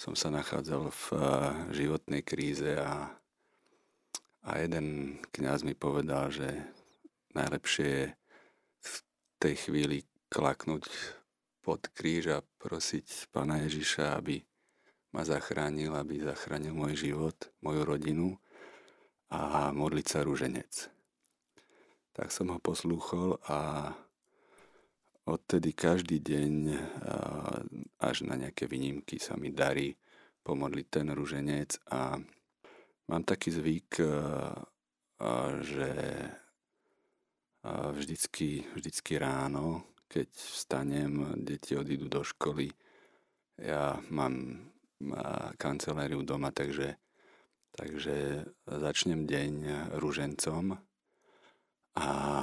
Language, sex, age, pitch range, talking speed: Slovak, male, 40-59, 70-75 Hz, 90 wpm